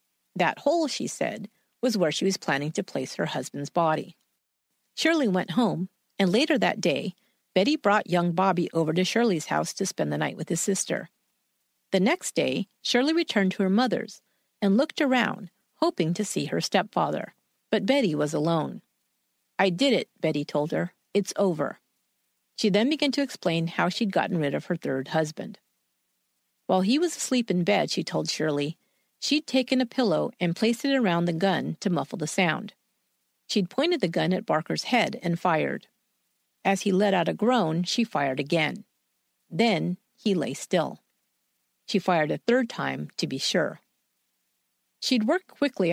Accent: American